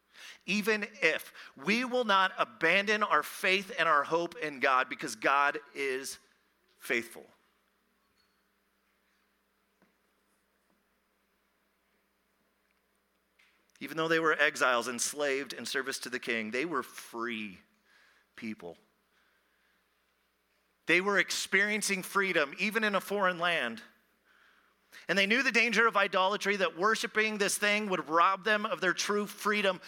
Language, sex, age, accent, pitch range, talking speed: English, male, 40-59, American, 175-215 Hz, 120 wpm